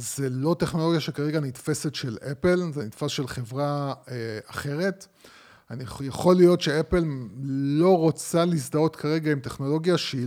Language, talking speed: Hebrew, 130 wpm